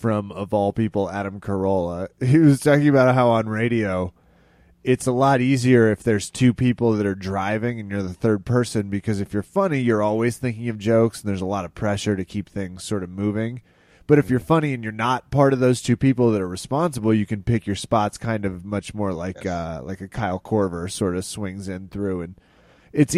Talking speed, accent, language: 225 wpm, American, English